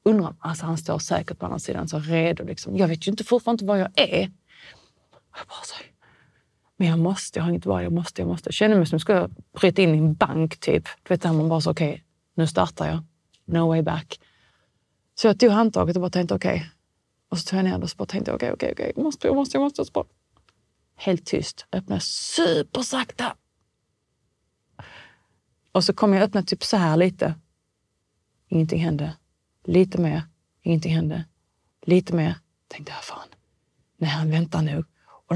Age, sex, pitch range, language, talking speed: 30-49, female, 160-210 Hz, Swedish, 195 wpm